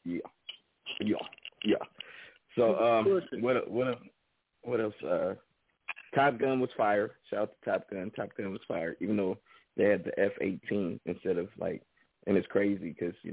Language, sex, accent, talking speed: English, male, American, 170 wpm